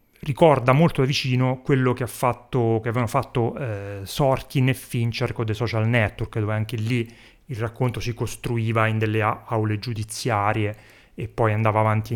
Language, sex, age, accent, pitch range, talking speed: Italian, male, 30-49, native, 115-155 Hz, 175 wpm